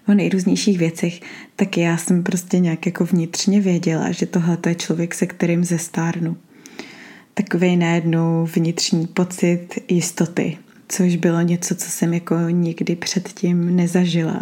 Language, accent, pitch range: Czech, native, 165-185 Hz